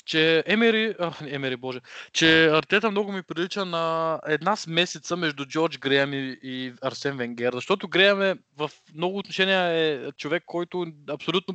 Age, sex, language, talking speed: 20-39, male, Bulgarian, 150 wpm